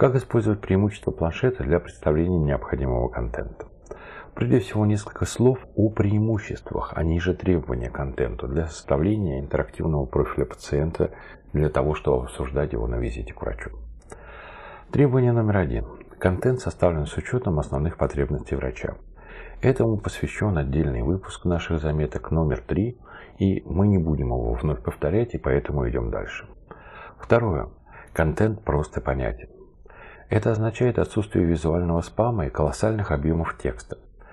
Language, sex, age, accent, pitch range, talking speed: Russian, male, 50-69, native, 75-105 Hz, 130 wpm